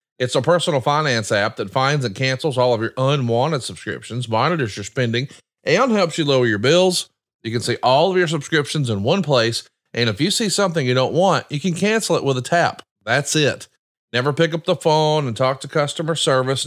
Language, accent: English, American